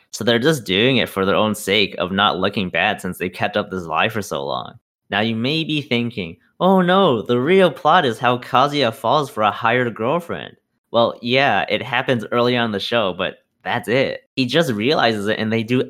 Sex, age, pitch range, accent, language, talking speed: male, 20-39, 105-135 Hz, American, English, 220 wpm